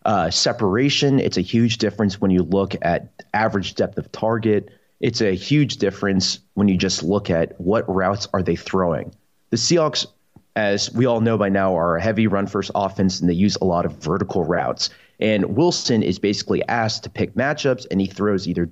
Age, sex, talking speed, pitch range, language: 30-49, male, 200 wpm, 95-120 Hz, English